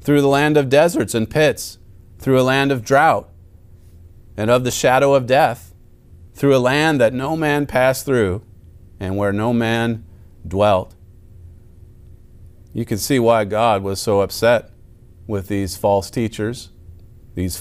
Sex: male